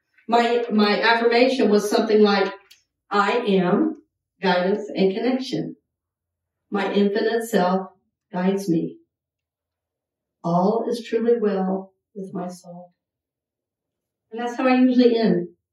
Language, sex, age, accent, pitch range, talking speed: English, female, 50-69, American, 190-245 Hz, 110 wpm